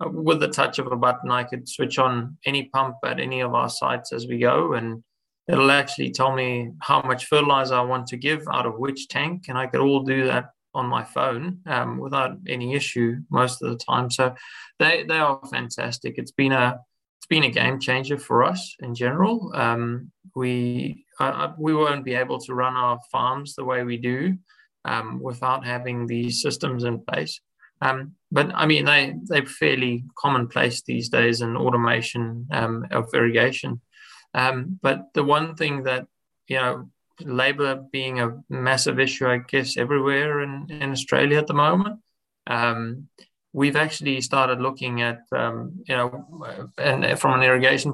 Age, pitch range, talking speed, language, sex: 20-39, 125-140 Hz, 175 wpm, English, male